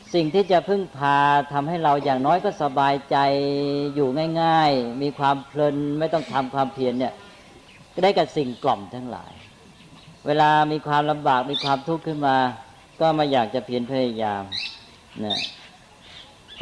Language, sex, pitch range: Thai, female, 120-150 Hz